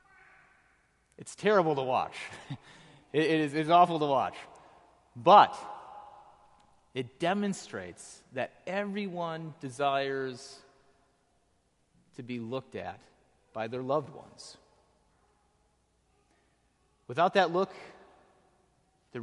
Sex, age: male, 30-49